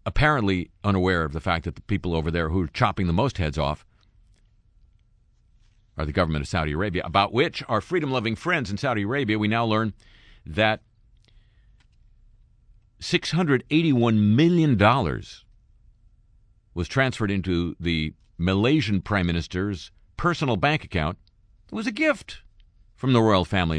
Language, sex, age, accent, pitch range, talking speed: English, male, 50-69, American, 85-110 Hz, 135 wpm